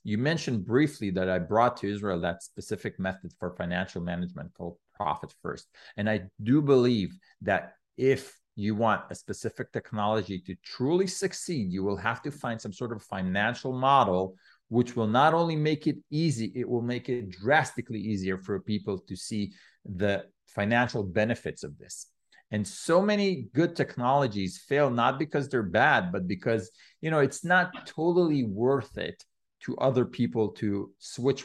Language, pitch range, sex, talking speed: English, 105-140 Hz, male, 165 wpm